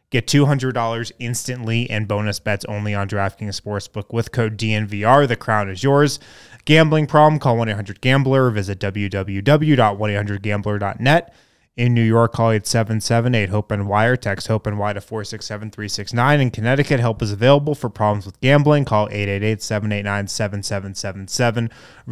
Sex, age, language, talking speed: male, 20-39, English, 125 wpm